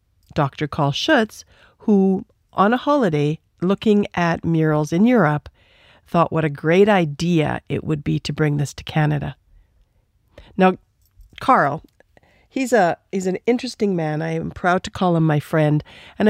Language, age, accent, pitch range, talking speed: English, 50-69, American, 150-185 Hz, 155 wpm